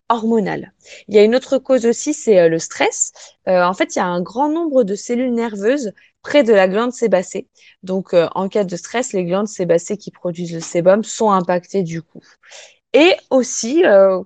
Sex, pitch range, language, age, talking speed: female, 185-240 Hz, French, 20-39, 205 wpm